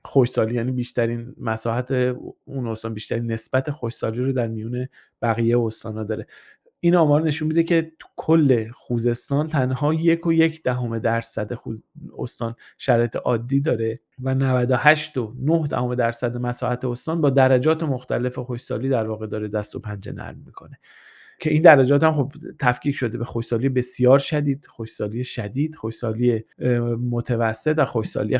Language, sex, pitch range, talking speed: Persian, male, 120-150 Hz, 150 wpm